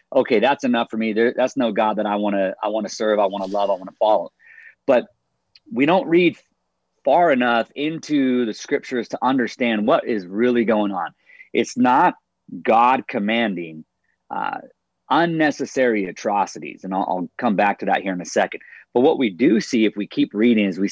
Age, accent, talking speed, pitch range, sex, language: 30-49, American, 195 wpm, 105-145 Hz, male, English